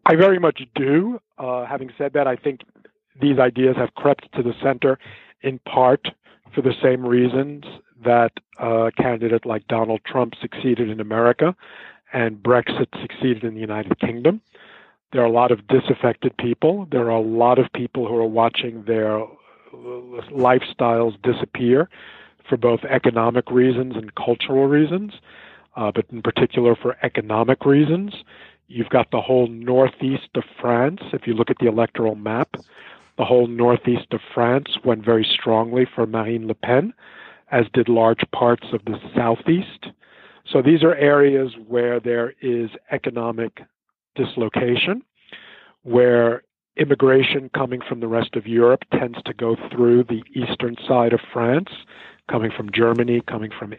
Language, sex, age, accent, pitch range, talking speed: English, male, 50-69, American, 115-135 Hz, 155 wpm